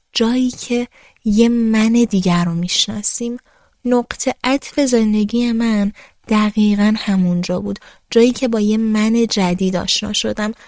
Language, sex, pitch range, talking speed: Persian, female, 195-245 Hz, 125 wpm